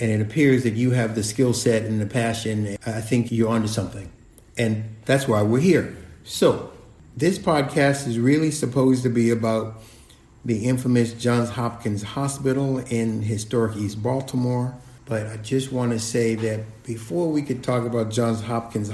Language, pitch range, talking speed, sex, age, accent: English, 110-125 Hz, 170 wpm, male, 50-69, American